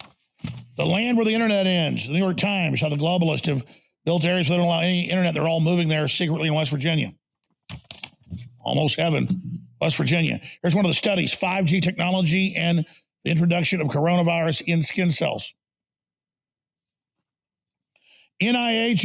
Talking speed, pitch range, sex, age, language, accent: 150 wpm, 165-195 Hz, male, 50-69, English, American